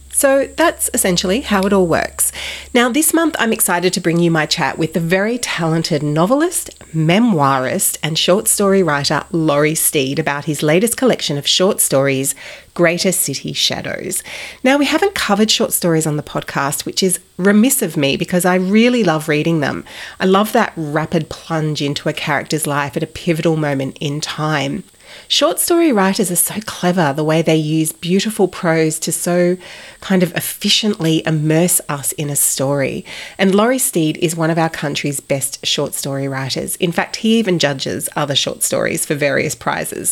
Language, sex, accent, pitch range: English, female, Australian, 155-200 Hz